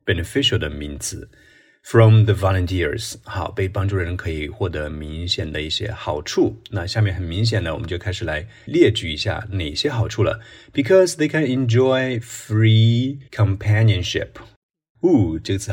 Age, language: 30-49, Chinese